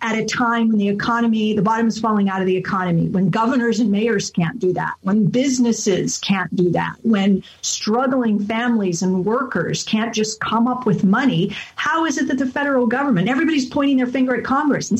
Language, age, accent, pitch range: English, 50-69, American, 200-255 Hz